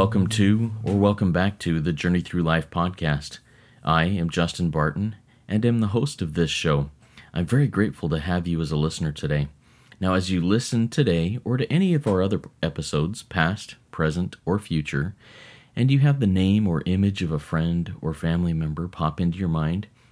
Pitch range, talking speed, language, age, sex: 80-100 Hz, 195 wpm, English, 30-49, male